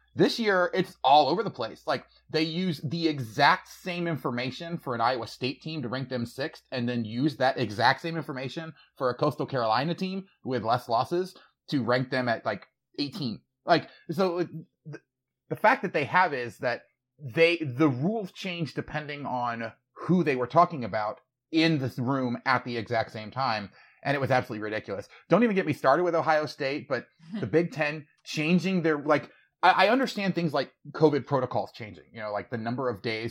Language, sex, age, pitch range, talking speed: English, male, 30-49, 115-160 Hz, 190 wpm